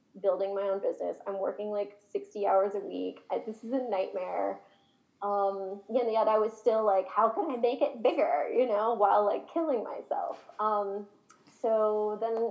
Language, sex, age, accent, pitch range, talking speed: English, female, 10-29, American, 200-255 Hz, 175 wpm